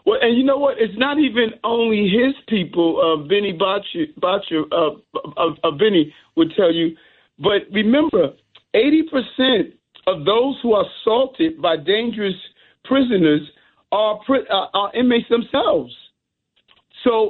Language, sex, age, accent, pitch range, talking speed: English, male, 50-69, American, 185-240 Hz, 140 wpm